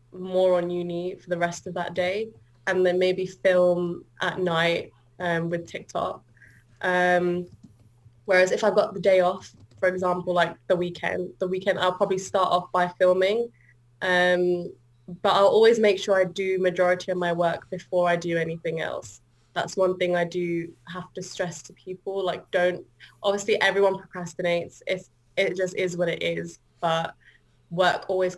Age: 20-39